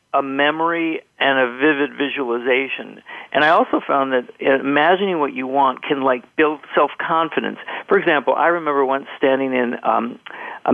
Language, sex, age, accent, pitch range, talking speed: English, male, 50-69, American, 130-160 Hz, 155 wpm